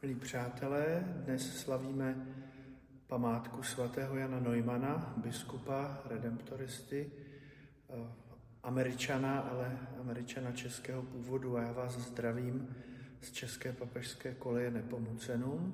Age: 40-59